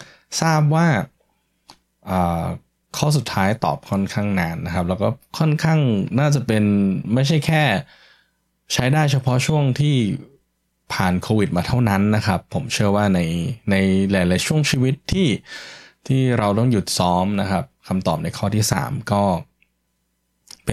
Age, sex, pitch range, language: 10-29, male, 95-130 Hz, Thai